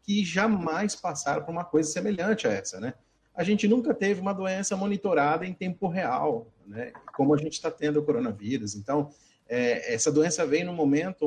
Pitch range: 140-180 Hz